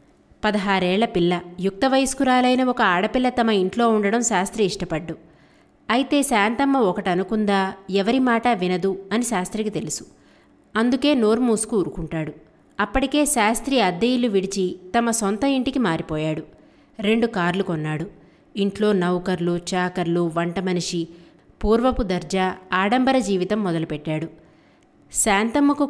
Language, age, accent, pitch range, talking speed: Telugu, 20-39, native, 185-240 Hz, 100 wpm